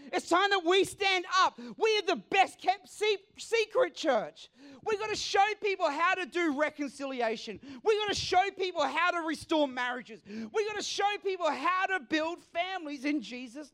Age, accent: 40-59, Australian